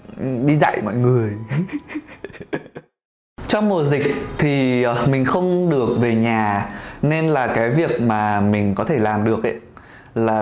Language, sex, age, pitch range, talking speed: Vietnamese, male, 20-39, 110-150 Hz, 145 wpm